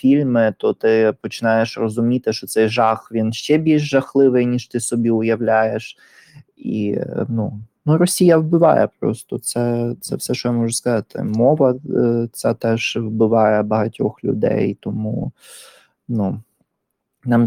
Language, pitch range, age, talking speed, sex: Ukrainian, 105-115 Hz, 20-39, 115 wpm, male